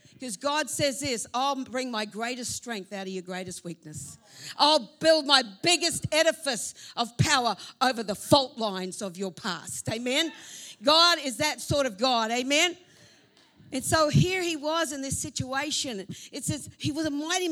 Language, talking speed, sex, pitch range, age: English, 170 wpm, female, 200-270 Hz, 50-69